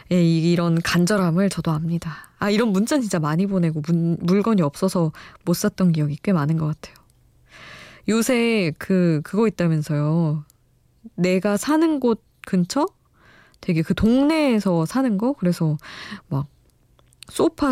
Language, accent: Korean, native